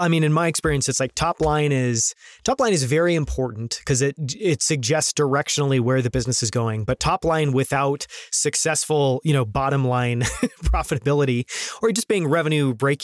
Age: 20-39